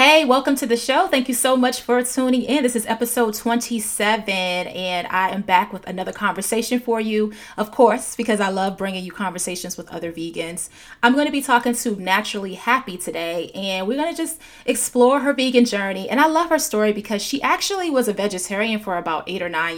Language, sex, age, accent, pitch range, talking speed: English, female, 30-49, American, 180-245 Hz, 210 wpm